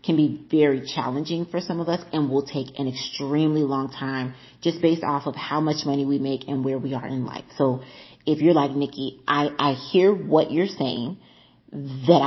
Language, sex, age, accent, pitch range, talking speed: English, female, 30-49, American, 135-165 Hz, 205 wpm